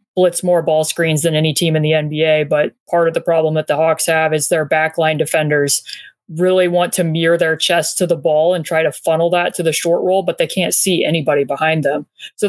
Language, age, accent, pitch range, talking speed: English, 20-39, American, 155-180 Hz, 235 wpm